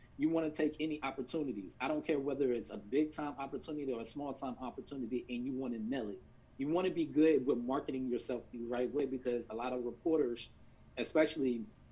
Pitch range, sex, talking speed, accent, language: 125-160 Hz, male, 215 wpm, American, English